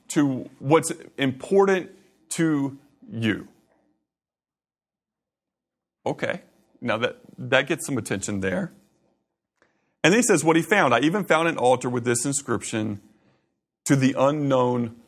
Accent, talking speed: American, 120 wpm